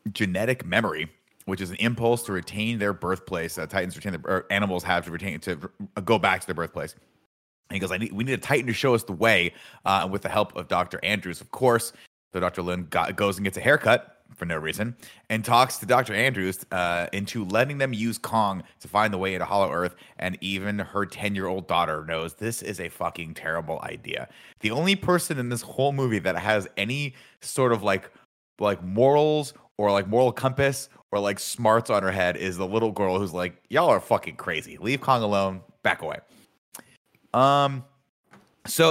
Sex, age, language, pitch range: male, 30-49, English, 95-115 Hz